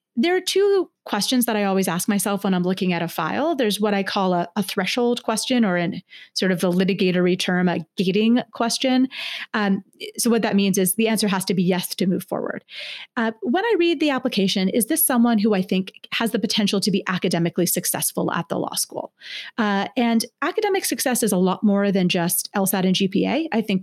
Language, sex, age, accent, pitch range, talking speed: English, female, 30-49, American, 185-225 Hz, 215 wpm